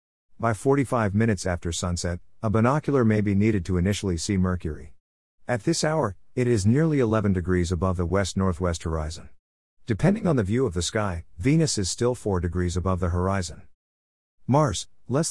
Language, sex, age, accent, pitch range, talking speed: English, male, 50-69, American, 85-115 Hz, 170 wpm